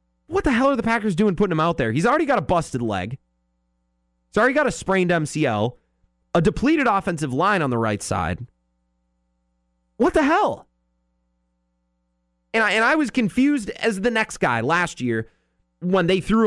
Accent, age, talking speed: American, 30-49, 180 wpm